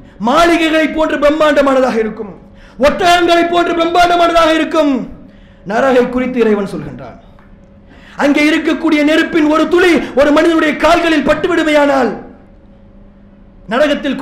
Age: 50-69